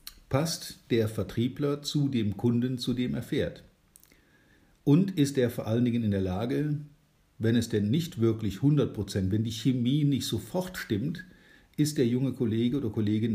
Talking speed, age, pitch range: 165 wpm, 50-69, 105-140 Hz